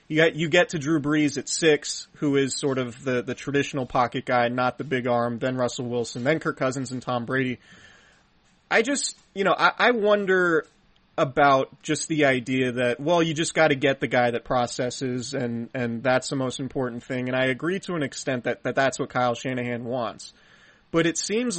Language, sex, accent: English, male, American